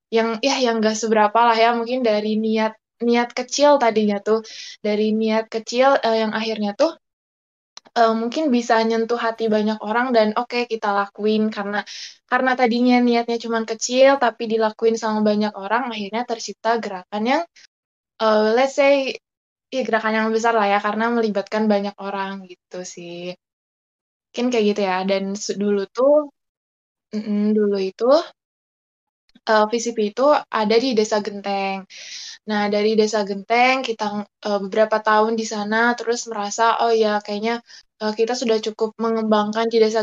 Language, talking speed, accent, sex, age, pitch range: Indonesian, 150 wpm, native, female, 10-29, 210-235 Hz